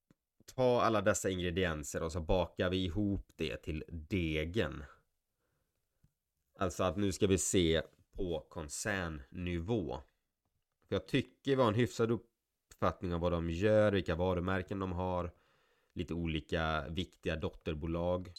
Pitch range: 85-105 Hz